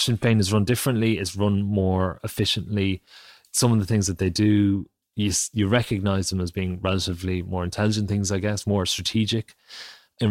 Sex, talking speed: male, 175 wpm